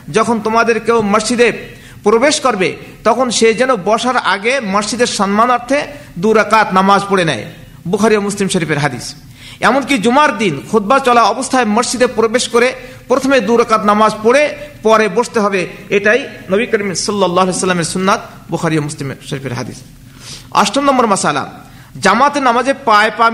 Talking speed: 80 wpm